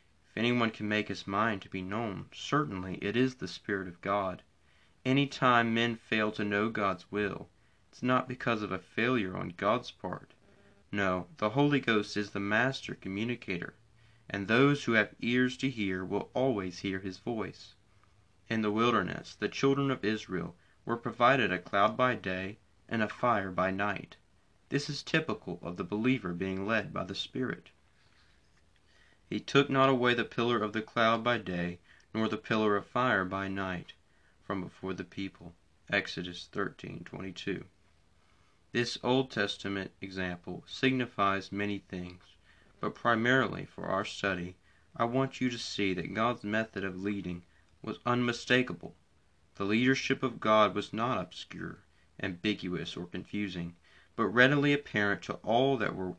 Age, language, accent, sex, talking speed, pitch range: 30-49, English, American, male, 155 wpm, 95-115 Hz